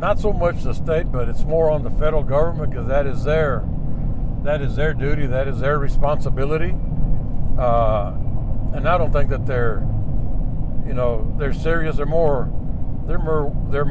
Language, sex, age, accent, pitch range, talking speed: English, male, 60-79, American, 120-145 Hz, 175 wpm